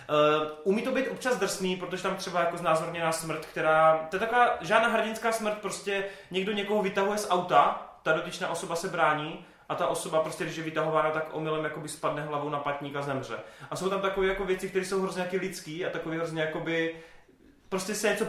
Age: 30-49